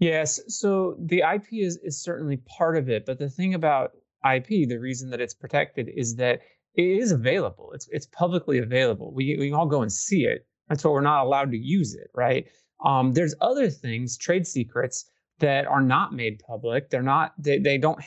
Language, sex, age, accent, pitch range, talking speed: English, male, 30-49, American, 120-155 Hz, 205 wpm